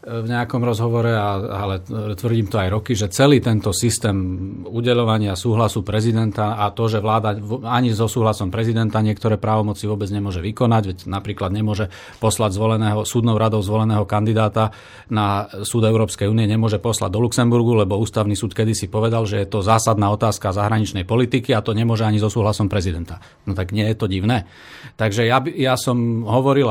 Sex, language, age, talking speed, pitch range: male, Slovak, 40-59, 170 wpm, 105-120 Hz